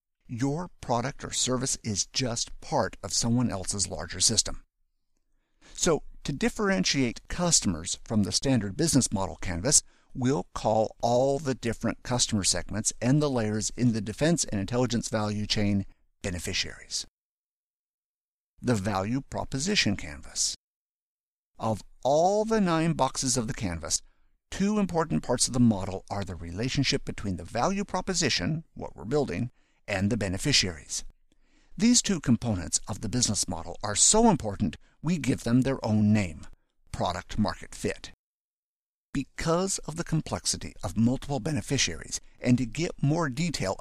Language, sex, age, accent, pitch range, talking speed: English, male, 50-69, American, 95-135 Hz, 140 wpm